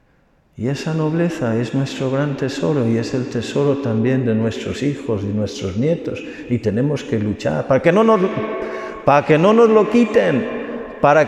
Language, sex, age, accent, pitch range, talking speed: Spanish, male, 50-69, Spanish, 115-185 Hz, 160 wpm